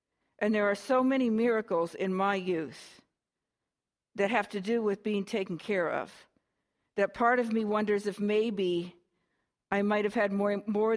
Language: English